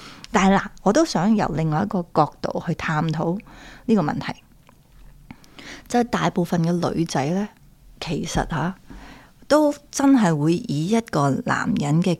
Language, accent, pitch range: Chinese, native, 170-235 Hz